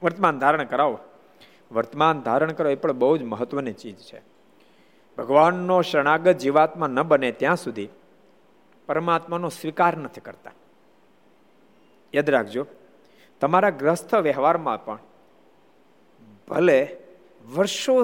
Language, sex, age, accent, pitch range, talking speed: Gujarati, male, 50-69, native, 170-245 Hz, 105 wpm